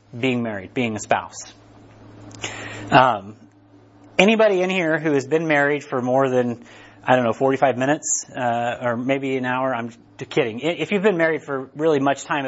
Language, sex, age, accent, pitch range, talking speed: English, male, 30-49, American, 120-160 Hz, 175 wpm